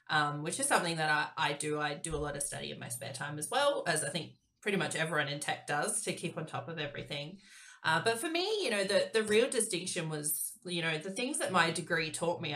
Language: English